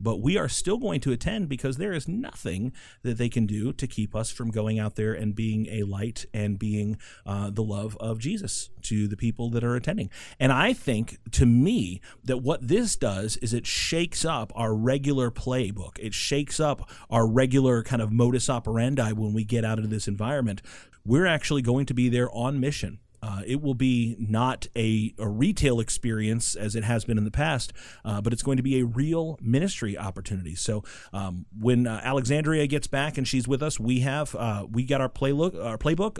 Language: English